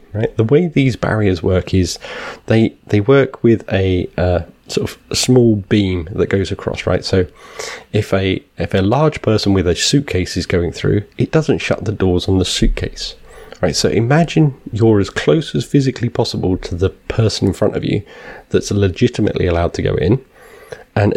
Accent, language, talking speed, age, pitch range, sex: British, English, 185 wpm, 30-49, 95-120 Hz, male